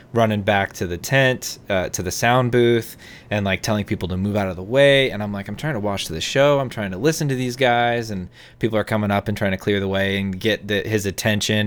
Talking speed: 265 wpm